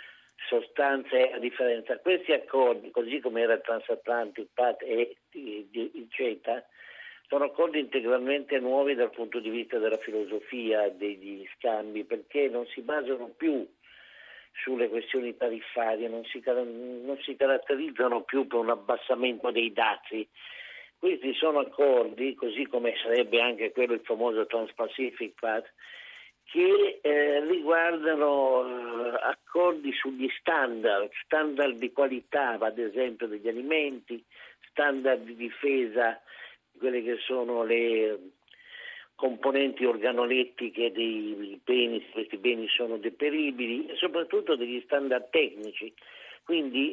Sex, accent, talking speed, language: male, native, 120 wpm, Italian